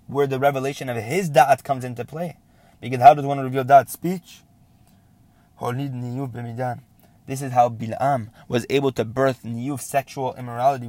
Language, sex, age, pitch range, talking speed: English, male, 20-39, 115-140 Hz, 150 wpm